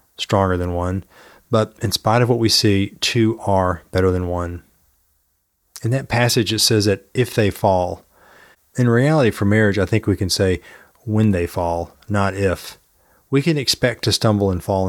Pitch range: 95-115 Hz